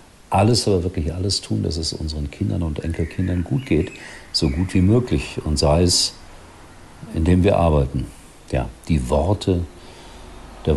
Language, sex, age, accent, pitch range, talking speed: German, male, 50-69, German, 80-95 Hz, 150 wpm